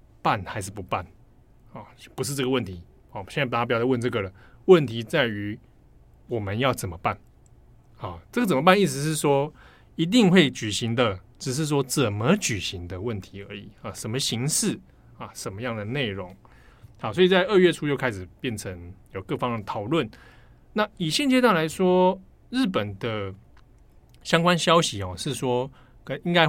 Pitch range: 105-140 Hz